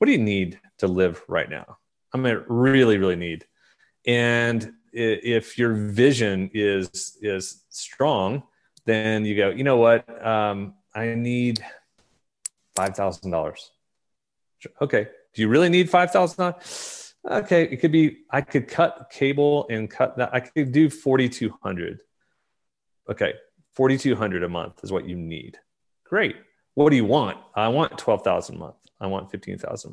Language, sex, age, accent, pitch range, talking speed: English, male, 30-49, American, 100-145 Hz, 150 wpm